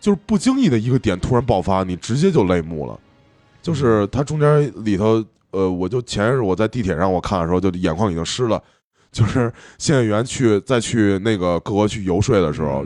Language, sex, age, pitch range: Chinese, male, 20-39, 90-120 Hz